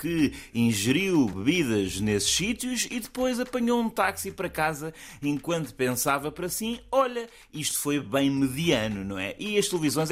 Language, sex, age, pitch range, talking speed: Portuguese, male, 20-39, 125-200 Hz, 155 wpm